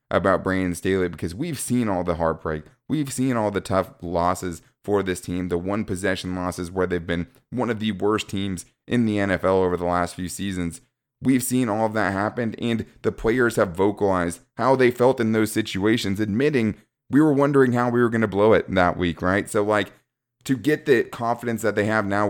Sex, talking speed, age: male, 215 wpm, 20-39